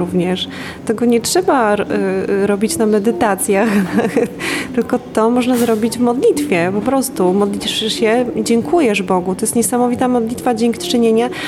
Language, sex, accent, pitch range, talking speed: Polish, female, native, 205-240 Hz, 130 wpm